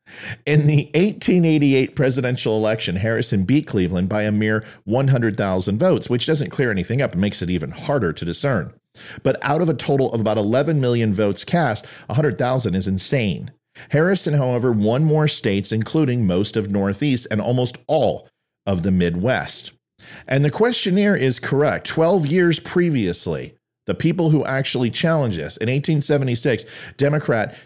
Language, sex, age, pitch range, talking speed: English, male, 40-59, 105-150 Hz, 155 wpm